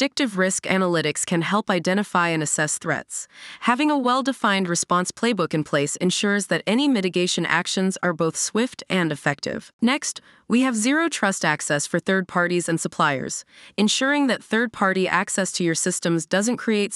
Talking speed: 155 wpm